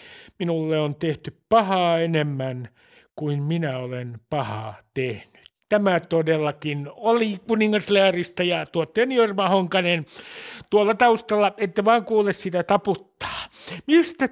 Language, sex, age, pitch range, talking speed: Finnish, male, 60-79, 155-220 Hz, 110 wpm